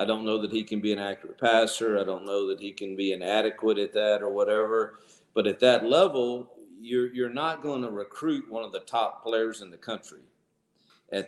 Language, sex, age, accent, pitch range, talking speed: English, male, 50-69, American, 100-120 Hz, 220 wpm